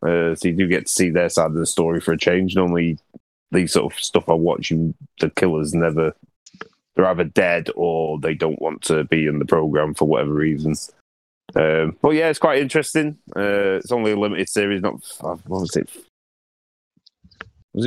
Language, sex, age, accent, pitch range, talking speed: English, male, 20-39, British, 80-110 Hz, 190 wpm